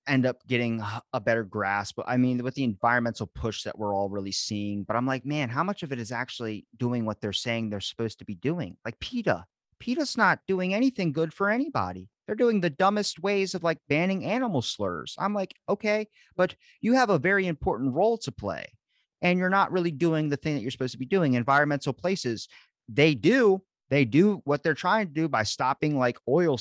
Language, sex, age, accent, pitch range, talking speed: English, male, 30-49, American, 125-185 Hz, 215 wpm